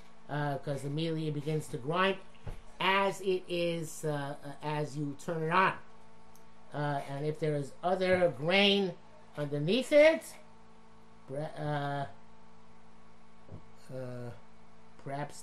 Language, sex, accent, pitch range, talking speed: English, male, American, 150-195 Hz, 115 wpm